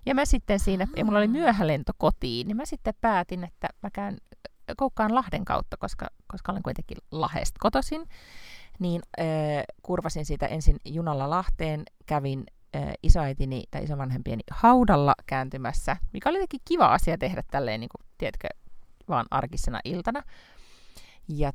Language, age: Finnish, 30-49